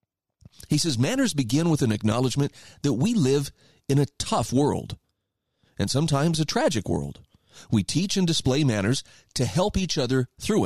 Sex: male